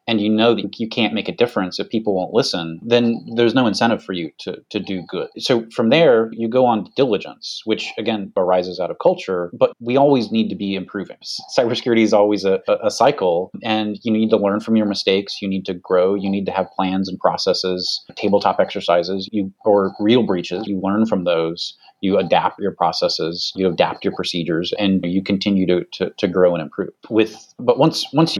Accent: American